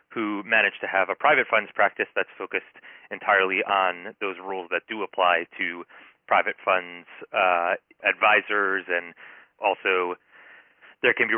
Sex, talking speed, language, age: male, 140 wpm, English, 30-49